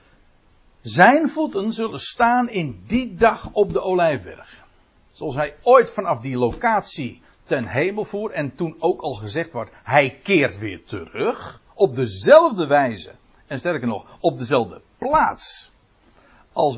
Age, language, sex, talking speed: 60-79, Dutch, male, 140 wpm